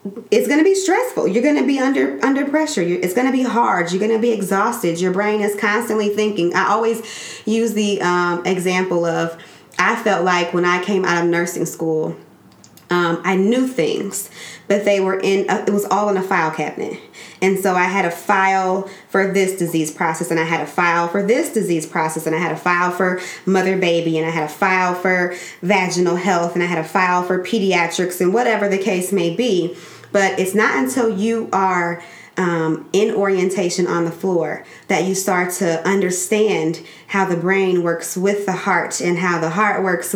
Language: English